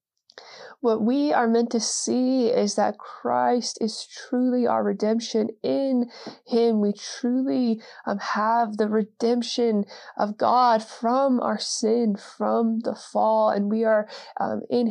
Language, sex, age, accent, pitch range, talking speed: English, female, 20-39, American, 210-245 Hz, 135 wpm